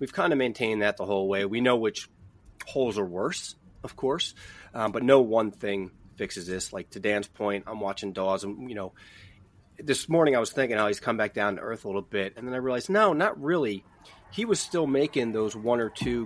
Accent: American